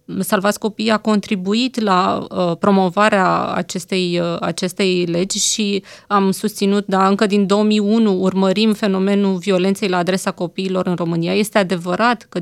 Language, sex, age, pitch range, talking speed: Romanian, female, 20-39, 190-220 Hz, 140 wpm